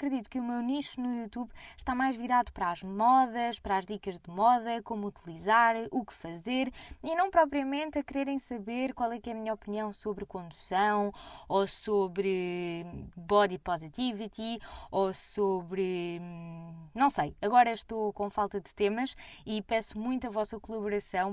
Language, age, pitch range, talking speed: Portuguese, 20-39, 200-245 Hz, 165 wpm